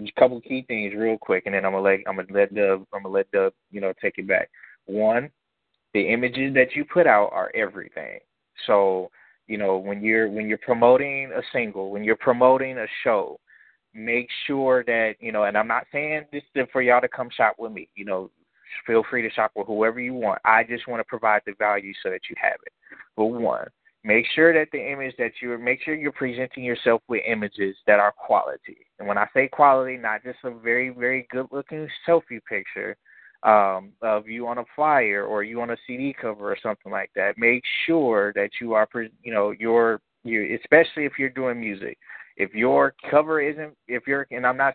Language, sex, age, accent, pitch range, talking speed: English, male, 20-39, American, 110-140 Hz, 210 wpm